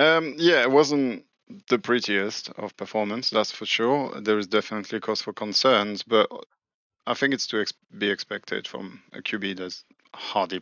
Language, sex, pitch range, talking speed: English, male, 95-110 Hz, 165 wpm